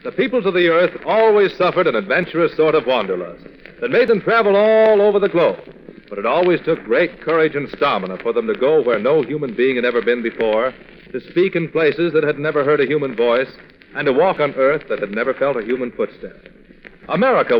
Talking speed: 220 wpm